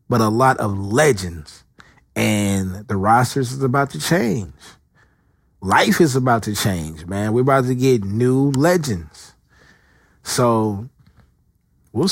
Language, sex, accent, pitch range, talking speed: English, male, American, 95-125 Hz, 130 wpm